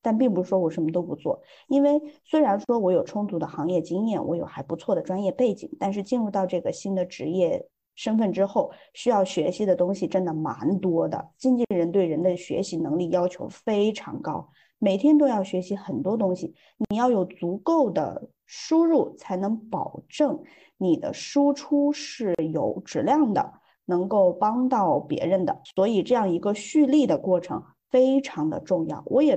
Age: 20-39